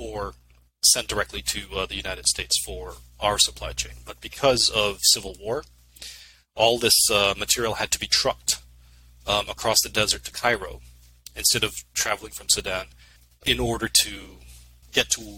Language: English